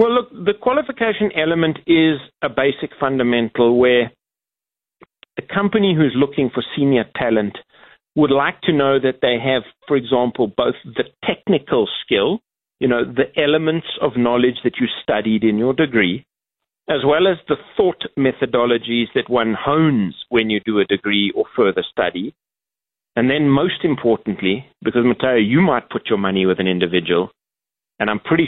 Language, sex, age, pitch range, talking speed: English, male, 40-59, 110-145 Hz, 160 wpm